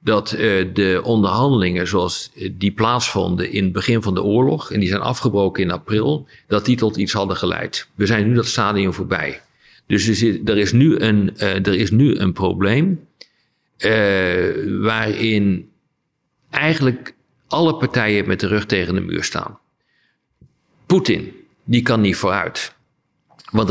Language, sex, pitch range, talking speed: Dutch, male, 100-125 Hz, 145 wpm